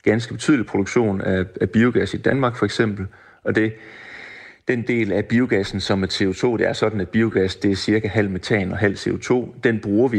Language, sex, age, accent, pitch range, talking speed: Danish, male, 30-49, native, 95-110 Hz, 200 wpm